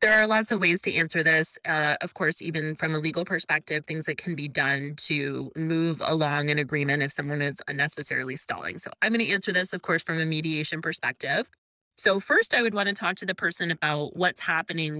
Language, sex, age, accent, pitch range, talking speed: English, female, 20-39, American, 150-185 Hz, 215 wpm